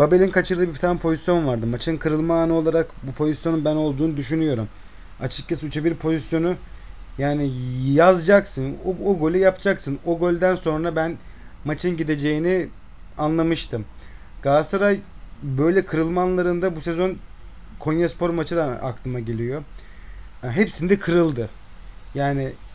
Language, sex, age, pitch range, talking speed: Turkish, male, 30-49, 130-175 Hz, 120 wpm